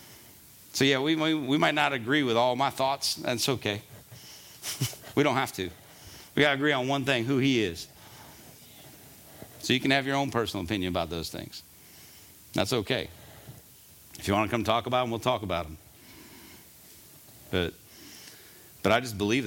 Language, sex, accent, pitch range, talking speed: English, male, American, 95-125 Hz, 180 wpm